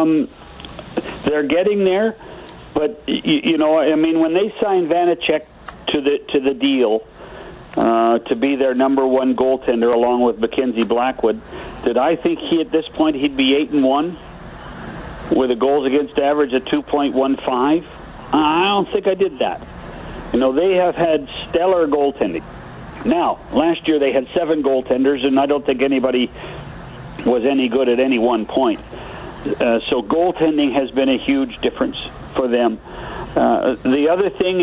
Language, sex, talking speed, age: English, male, 160 wpm, 60-79